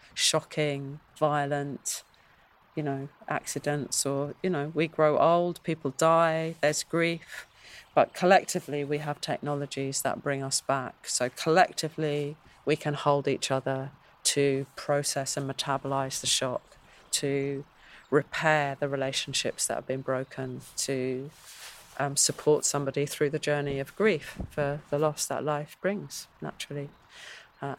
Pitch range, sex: 140-170 Hz, female